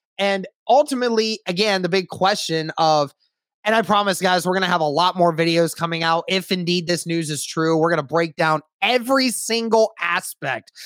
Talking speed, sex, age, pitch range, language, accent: 195 wpm, male, 20-39, 170-215 Hz, English, American